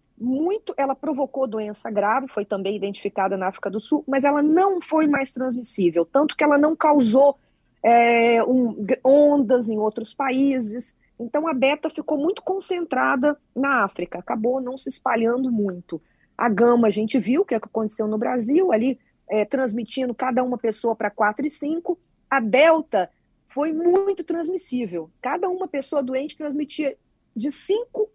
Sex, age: female, 40-59